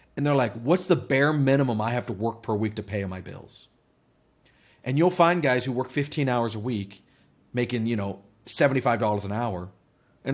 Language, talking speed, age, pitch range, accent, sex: English, 205 wpm, 40-59, 110-145 Hz, American, male